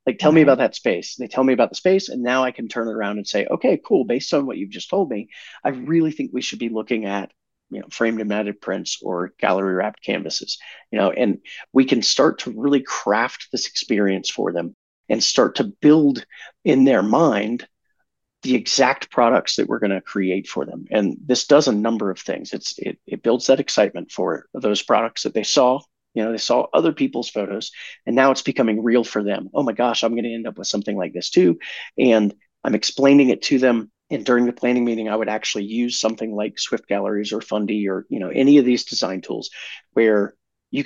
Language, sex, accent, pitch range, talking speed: English, male, American, 105-125 Hz, 230 wpm